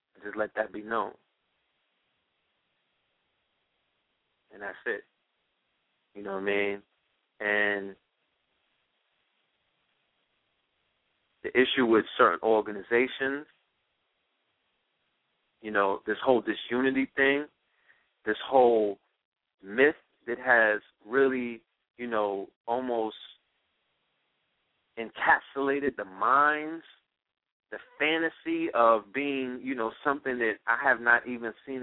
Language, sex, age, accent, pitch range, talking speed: English, male, 40-59, American, 115-155 Hz, 95 wpm